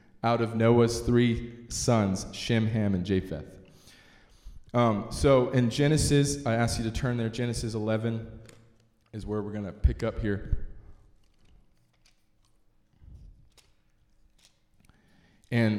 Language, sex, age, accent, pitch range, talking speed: English, male, 20-39, American, 110-125 Hz, 110 wpm